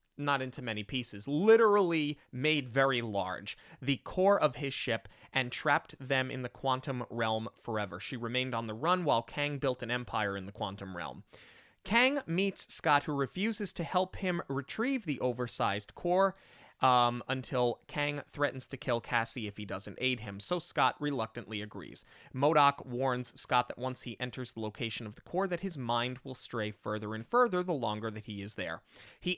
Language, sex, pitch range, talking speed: English, male, 115-155 Hz, 185 wpm